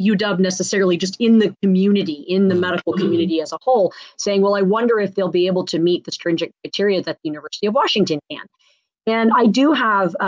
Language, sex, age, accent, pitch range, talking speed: English, female, 30-49, American, 175-215 Hz, 210 wpm